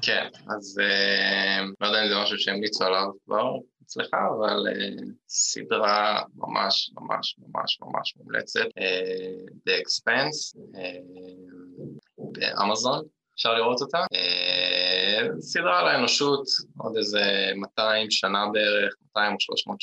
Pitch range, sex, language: 95-110 Hz, male, Hebrew